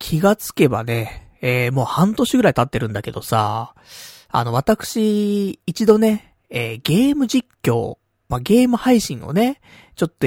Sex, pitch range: male, 115-190 Hz